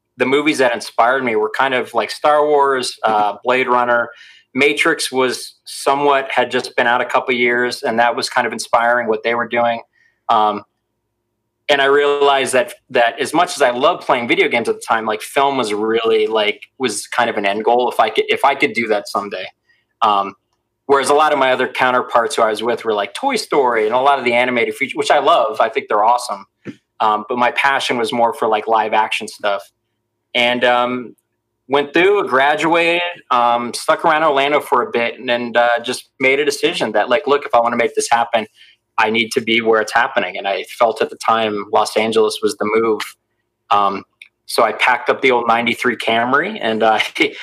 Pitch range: 115-140 Hz